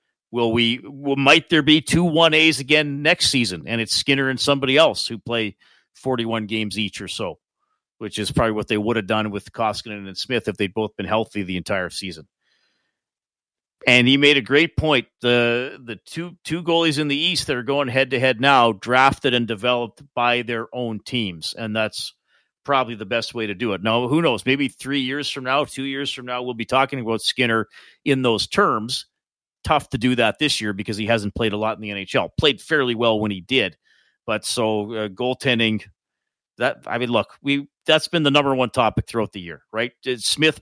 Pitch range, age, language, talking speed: 105-135 Hz, 40-59, English, 205 wpm